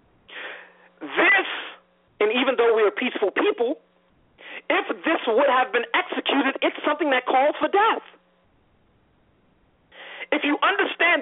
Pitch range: 270-345 Hz